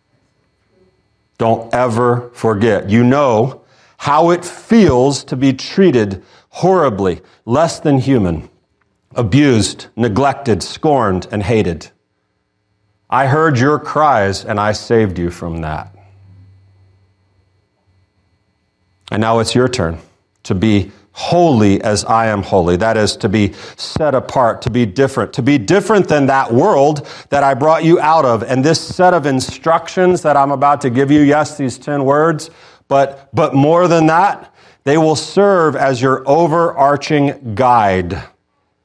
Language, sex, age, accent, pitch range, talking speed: English, male, 40-59, American, 105-145 Hz, 140 wpm